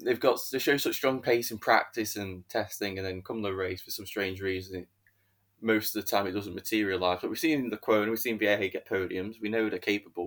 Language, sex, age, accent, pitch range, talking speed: English, male, 10-29, British, 95-105 Hz, 250 wpm